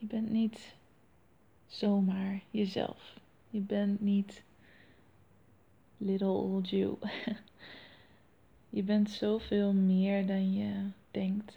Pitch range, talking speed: 200-220 Hz, 95 wpm